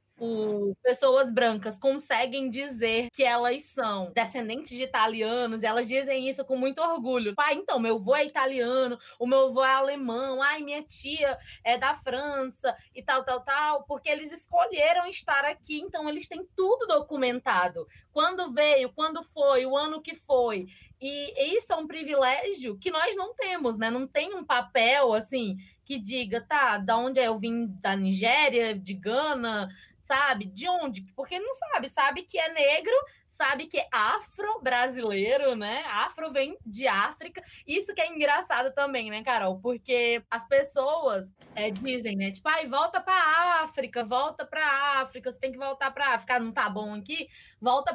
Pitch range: 235-310 Hz